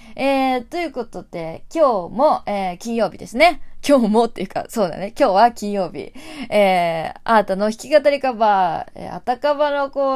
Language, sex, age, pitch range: Japanese, female, 20-39, 190-265 Hz